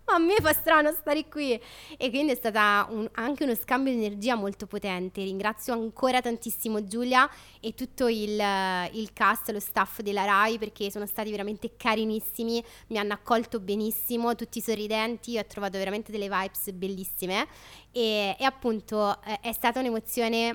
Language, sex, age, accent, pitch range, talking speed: Italian, female, 20-39, native, 210-255 Hz, 160 wpm